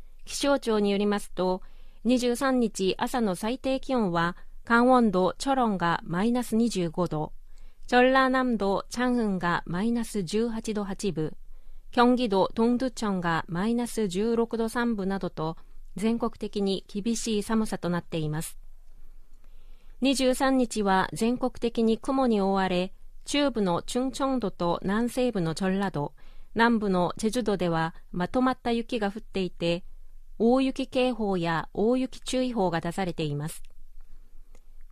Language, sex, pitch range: Japanese, female, 180-240 Hz